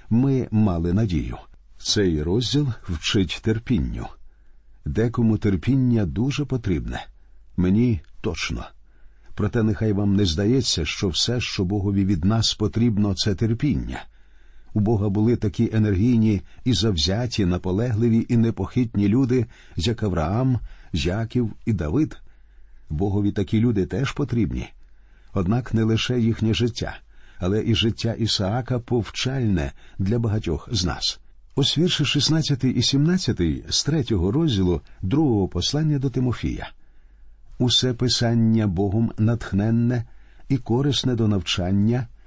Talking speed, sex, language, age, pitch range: 120 wpm, male, Ukrainian, 50-69, 90-120 Hz